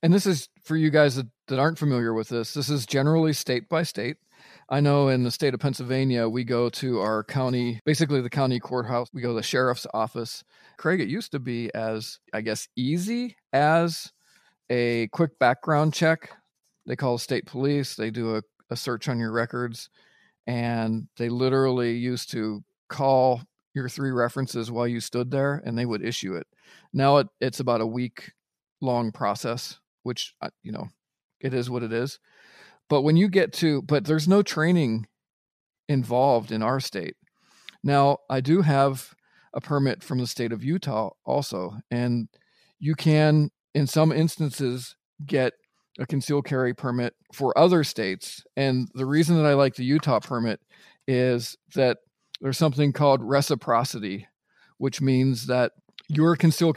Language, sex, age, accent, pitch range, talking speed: English, male, 40-59, American, 120-150 Hz, 165 wpm